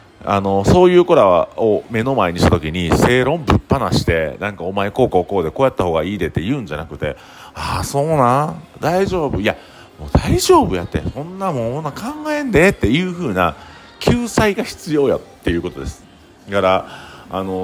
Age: 40-59